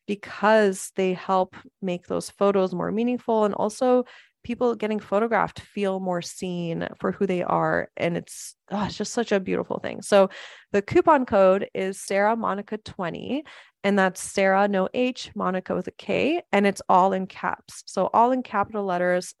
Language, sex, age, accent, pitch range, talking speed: English, female, 20-39, American, 190-235 Hz, 165 wpm